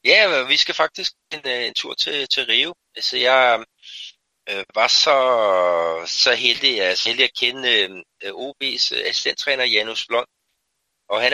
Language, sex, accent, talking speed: Danish, male, native, 150 wpm